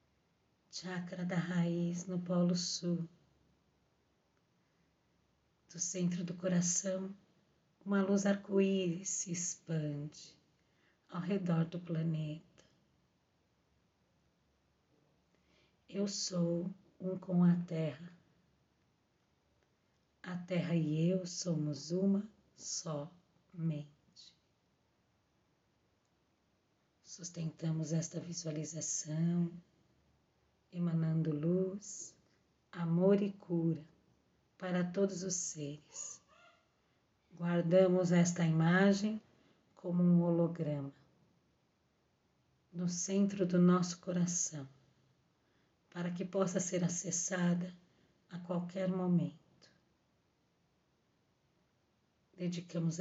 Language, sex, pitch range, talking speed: Portuguese, female, 165-185 Hz, 75 wpm